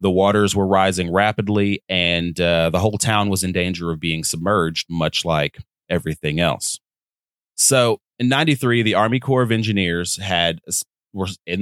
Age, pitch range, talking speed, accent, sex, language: 30-49, 85-100 Hz, 160 wpm, American, male, English